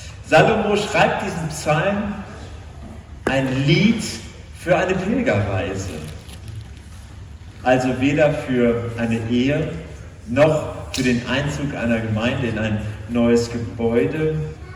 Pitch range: 105-150 Hz